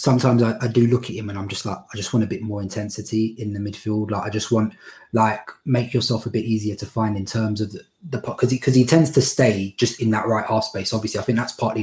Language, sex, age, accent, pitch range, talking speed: English, male, 20-39, British, 100-115 Hz, 280 wpm